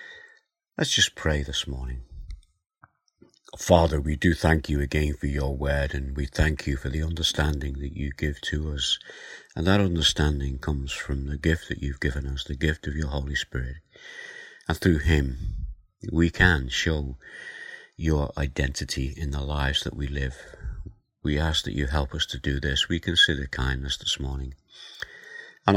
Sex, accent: male, British